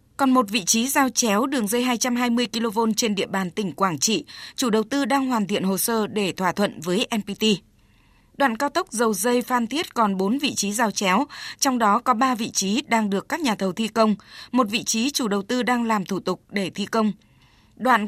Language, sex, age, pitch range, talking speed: Vietnamese, female, 20-39, 200-250 Hz, 230 wpm